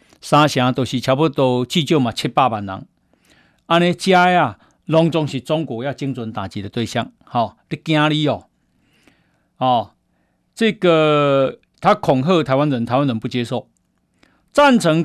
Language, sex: Chinese, male